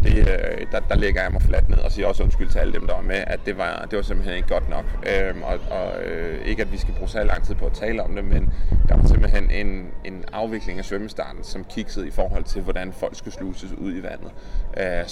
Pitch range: 85-105 Hz